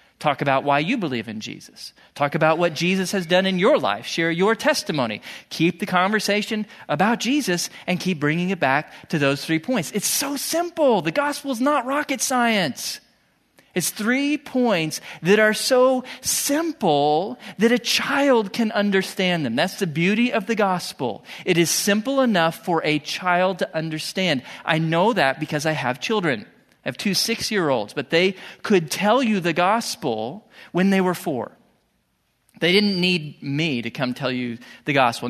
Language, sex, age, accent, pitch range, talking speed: English, male, 40-59, American, 145-205 Hz, 175 wpm